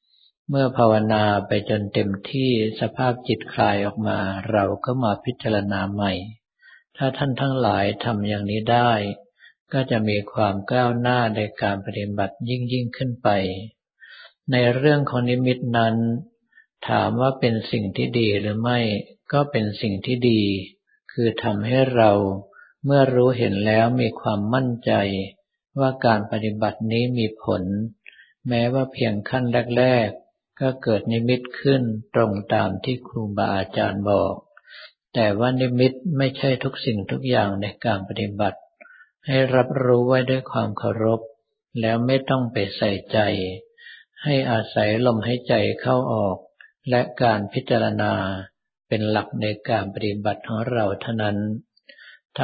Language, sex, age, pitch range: Thai, male, 60-79, 105-125 Hz